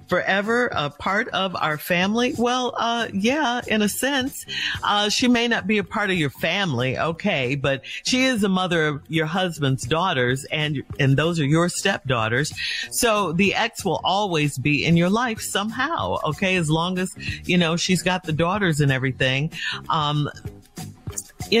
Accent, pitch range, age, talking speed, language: American, 145-220 Hz, 40-59, 170 wpm, English